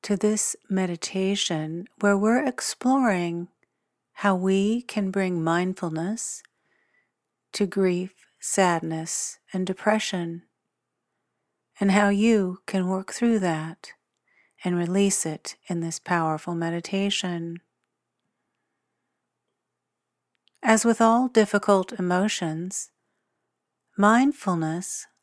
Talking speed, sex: 85 wpm, female